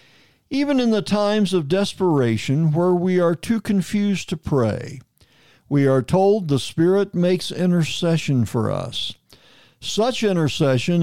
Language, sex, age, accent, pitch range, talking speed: English, male, 60-79, American, 130-185 Hz, 130 wpm